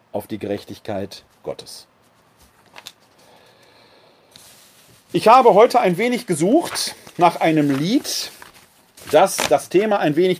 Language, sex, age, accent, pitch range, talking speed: German, male, 40-59, German, 130-175 Hz, 105 wpm